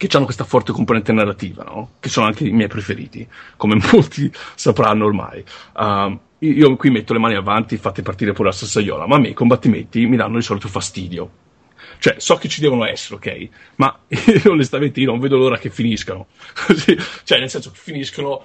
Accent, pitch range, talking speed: native, 105-135 Hz, 190 wpm